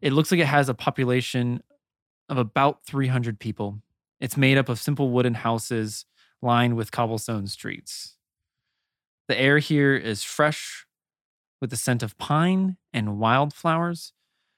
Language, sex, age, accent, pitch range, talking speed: English, male, 20-39, American, 110-135 Hz, 140 wpm